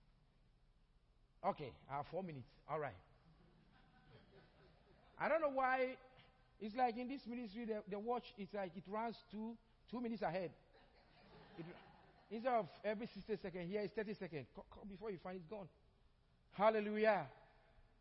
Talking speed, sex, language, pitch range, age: 145 wpm, male, English, 205-290 Hz, 50-69